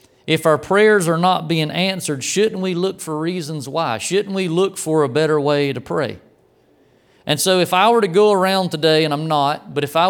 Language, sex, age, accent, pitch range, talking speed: English, male, 40-59, American, 145-180 Hz, 220 wpm